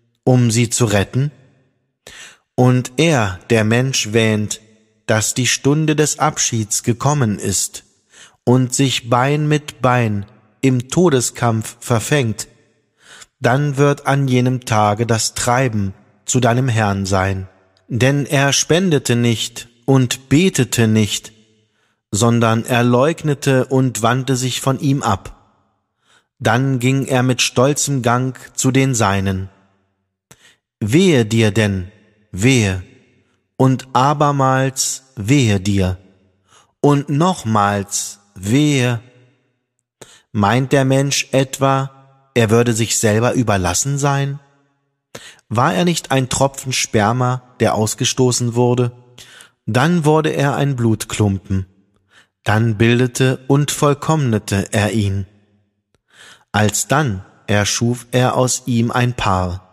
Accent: German